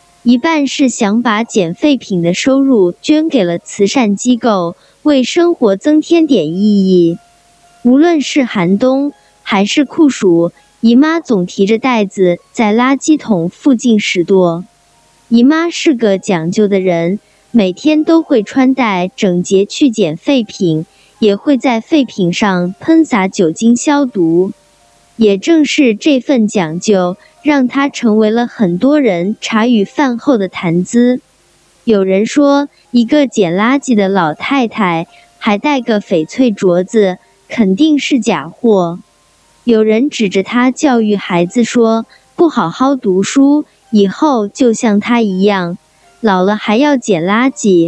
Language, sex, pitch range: Chinese, male, 190-270 Hz